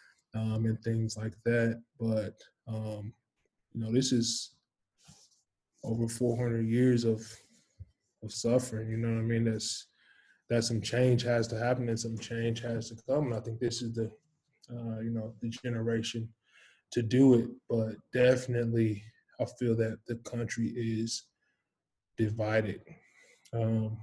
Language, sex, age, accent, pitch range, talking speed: English, male, 20-39, American, 110-125 Hz, 145 wpm